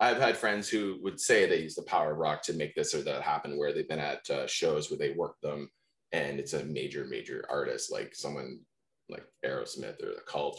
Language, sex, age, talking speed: English, male, 20-39, 230 wpm